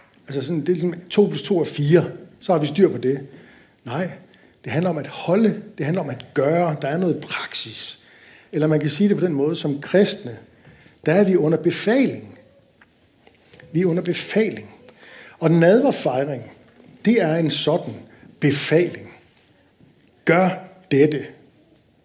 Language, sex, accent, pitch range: Danish, male, native, 140-180 Hz